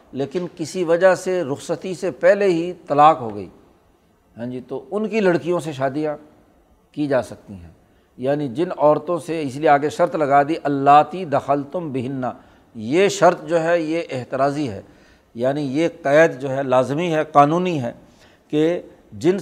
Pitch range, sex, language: 135-170 Hz, male, Urdu